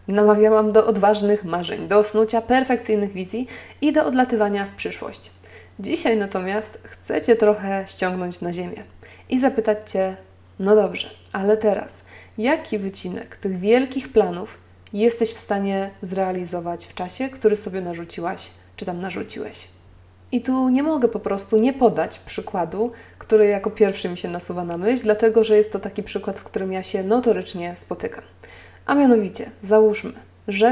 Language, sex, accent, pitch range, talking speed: Polish, female, native, 195-230 Hz, 150 wpm